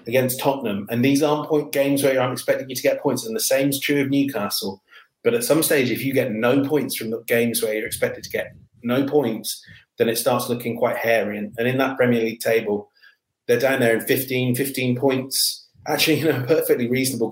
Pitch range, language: 115-140 Hz, English